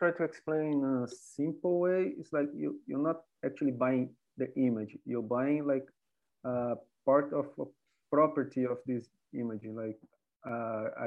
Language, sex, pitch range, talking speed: English, male, 125-155 Hz, 150 wpm